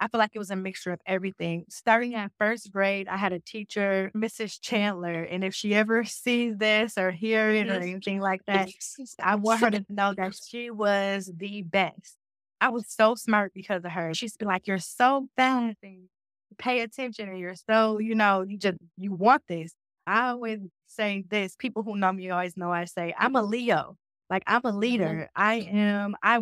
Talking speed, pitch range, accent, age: 200 wpm, 180-220 Hz, American, 20-39